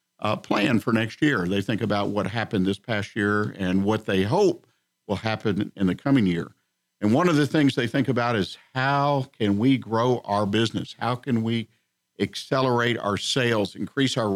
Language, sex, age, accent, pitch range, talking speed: English, male, 50-69, American, 105-130 Hz, 190 wpm